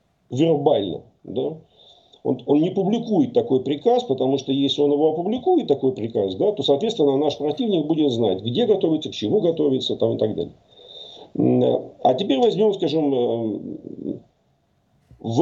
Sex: male